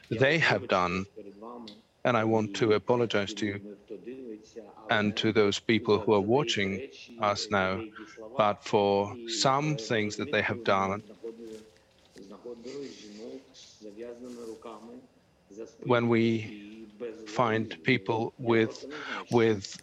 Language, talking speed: English, 100 wpm